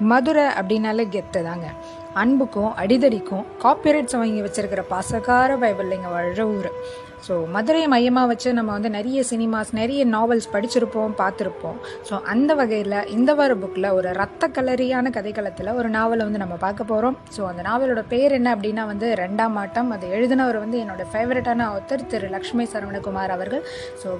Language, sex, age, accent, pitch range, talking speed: Tamil, female, 20-39, native, 210-265 Hz, 150 wpm